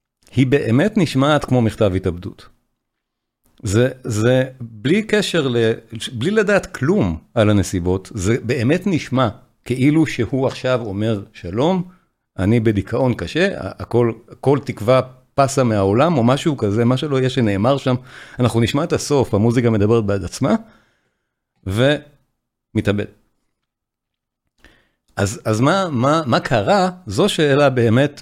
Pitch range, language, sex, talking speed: 110-145 Hz, Hebrew, male, 120 wpm